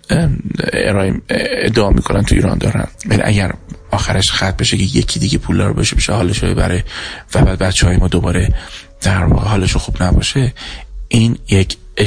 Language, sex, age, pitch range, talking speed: Persian, male, 30-49, 90-100 Hz, 155 wpm